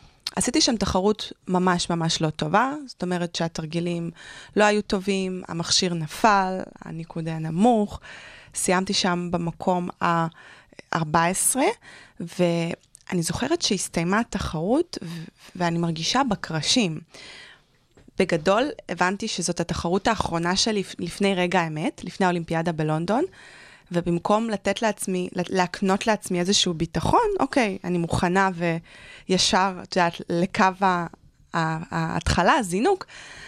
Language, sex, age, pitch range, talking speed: Hebrew, female, 20-39, 170-200 Hz, 105 wpm